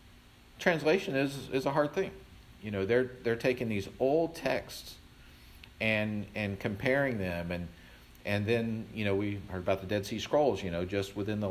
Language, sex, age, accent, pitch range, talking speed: English, male, 50-69, American, 95-130 Hz, 180 wpm